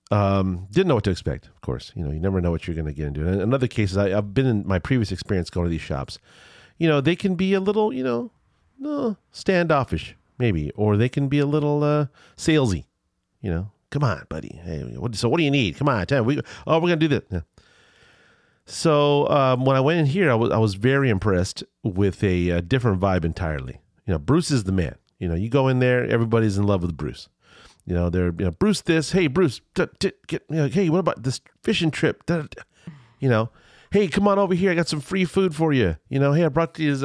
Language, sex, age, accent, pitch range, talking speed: English, male, 40-59, American, 95-145 Hz, 255 wpm